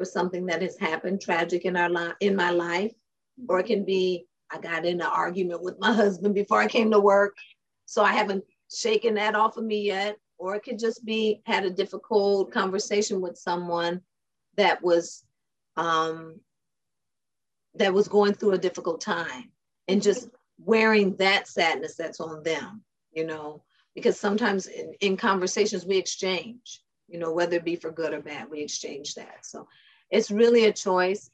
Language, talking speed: English, 175 wpm